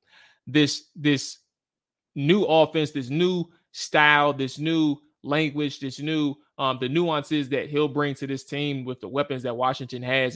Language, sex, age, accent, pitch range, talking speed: English, male, 20-39, American, 135-165 Hz, 155 wpm